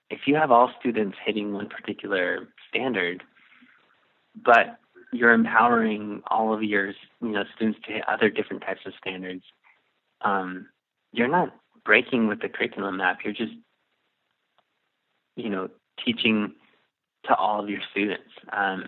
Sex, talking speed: male, 140 wpm